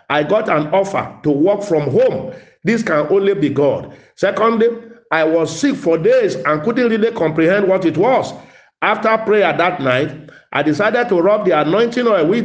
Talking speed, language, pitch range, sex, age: 185 wpm, English, 150-215 Hz, male, 50-69